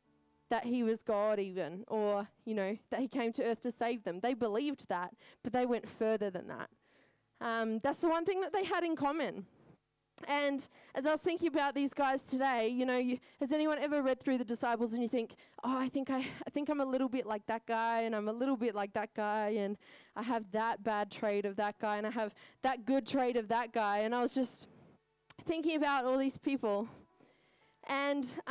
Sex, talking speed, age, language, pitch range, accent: female, 225 wpm, 20-39, English, 215-280 Hz, Australian